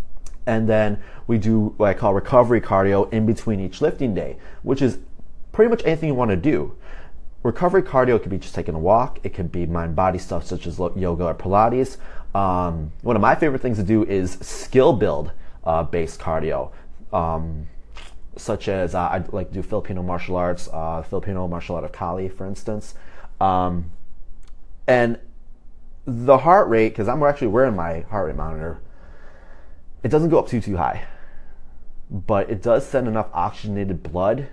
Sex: male